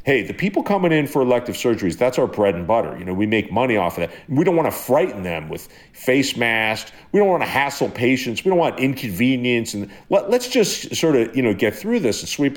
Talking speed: 255 wpm